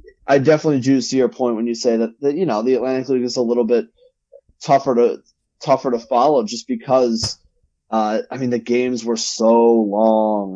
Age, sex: 20-39, male